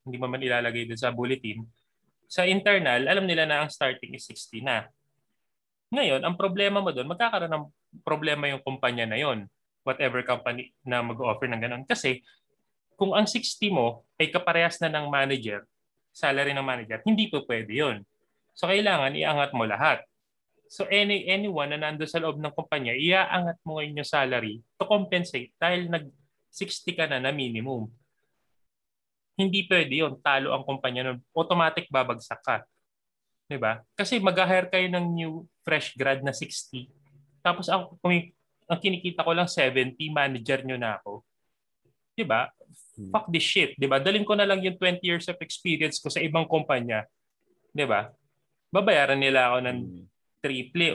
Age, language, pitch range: 20-39, Filipino, 125-175 Hz